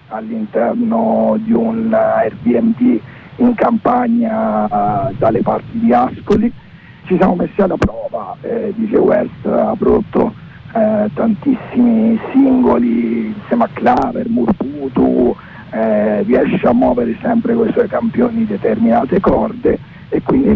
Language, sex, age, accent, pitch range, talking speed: Italian, male, 50-69, native, 180-235 Hz, 115 wpm